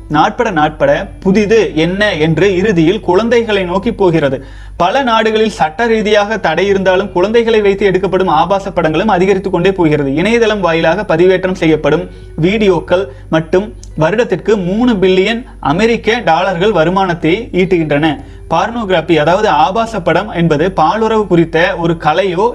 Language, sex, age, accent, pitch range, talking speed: Tamil, male, 30-49, native, 160-210 Hz, 115 wpm